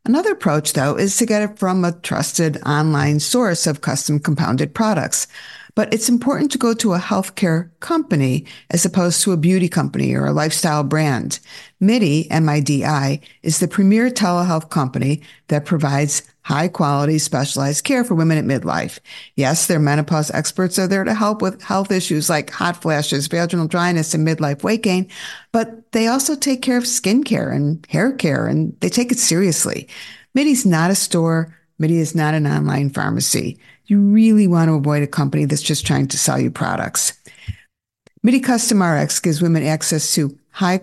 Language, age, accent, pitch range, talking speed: English, 50-69, American, 155-210 Hz, 175 wpm